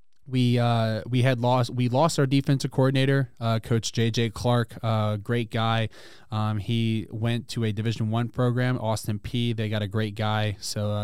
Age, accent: 20-39, American